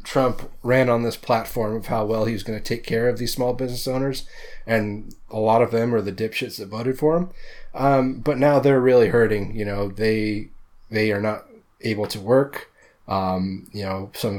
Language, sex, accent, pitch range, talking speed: English, male, American, 100-120 Hz, 200 wpm